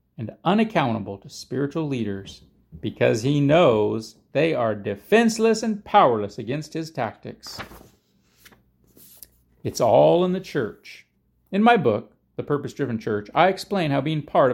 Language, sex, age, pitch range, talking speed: English, male, 40-59, 120-195 Hz, 130 wpm